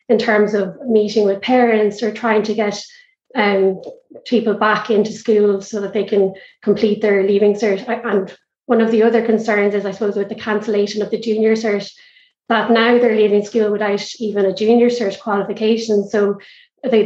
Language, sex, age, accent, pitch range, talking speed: English, female, 20-39, Irish, 205-230 Hz, 185 wpm